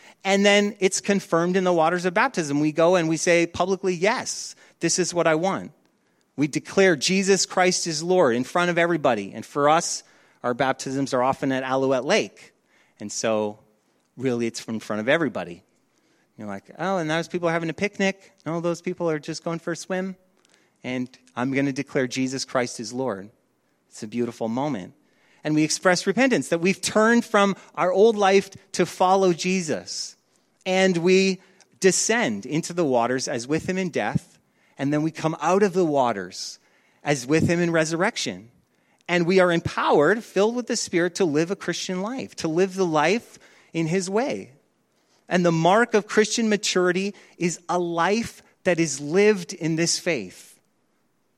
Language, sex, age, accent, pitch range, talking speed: English, male, 30-49, American, 145-190 Hz, 180 wpm